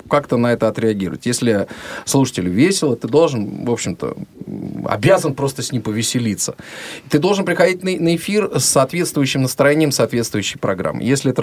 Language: Russian